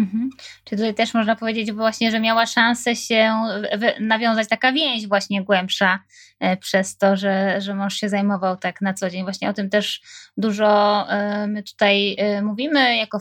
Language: Polish